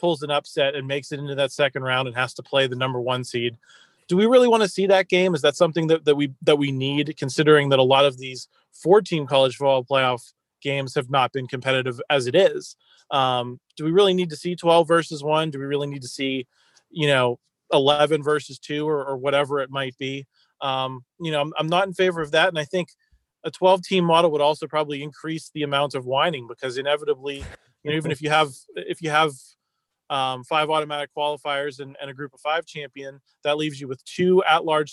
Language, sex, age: English, male, 30-49